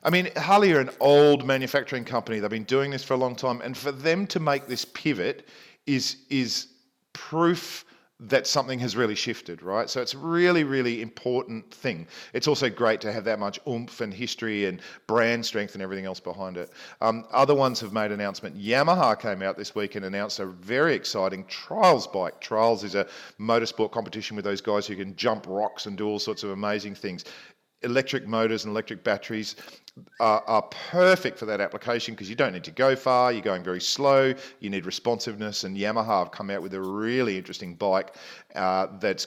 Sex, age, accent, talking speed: male, 40-59, Australian, 200 wpm